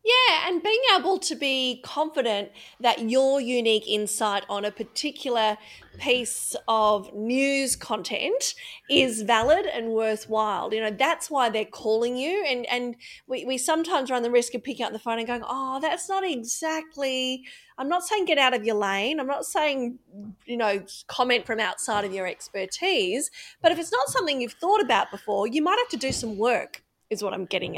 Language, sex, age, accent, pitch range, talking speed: English, female, 30-49, Australian, 225-305 Hz, 190 wpm